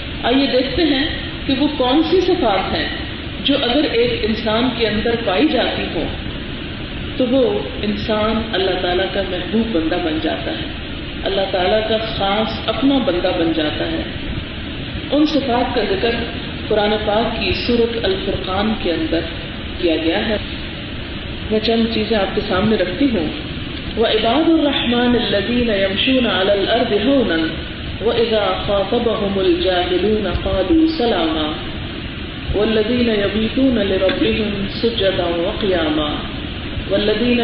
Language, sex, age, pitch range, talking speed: Urdu, female, 40-59, 190-245 Hz, 120 wpm